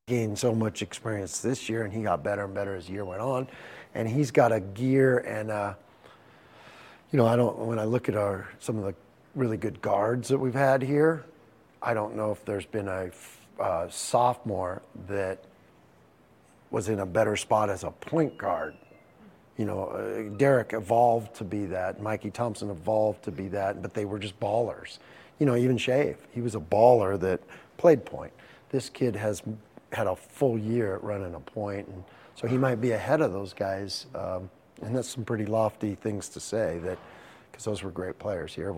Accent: American